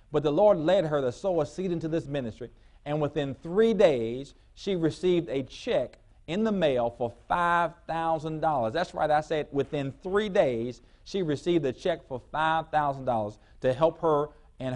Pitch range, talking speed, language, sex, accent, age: 120-165 Hz, 170 wpm, English, male, American, 50-69